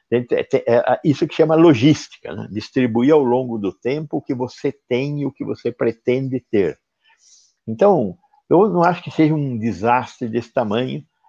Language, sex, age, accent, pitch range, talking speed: Portuguese, male, 60-79, Brazilian, 110-150 Hz, 160 wpm